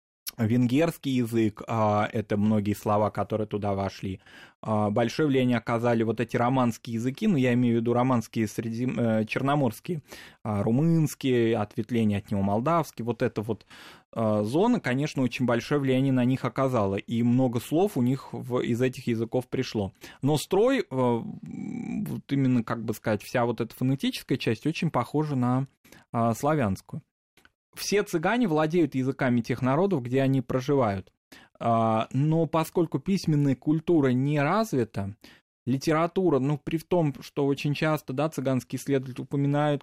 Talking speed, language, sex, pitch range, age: 135 wpm, Russian, male, 115-145 Hz, 20-39